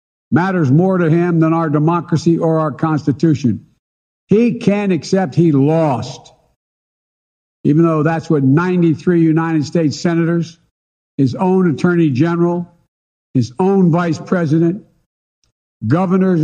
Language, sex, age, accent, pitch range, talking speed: English, male, 60-79, American, 145-185 Hz, 115 wpm